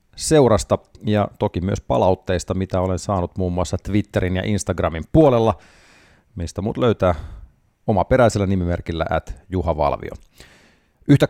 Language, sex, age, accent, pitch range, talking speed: Finnish, male, 40-59, native, 90-120 Hz, 135 wpm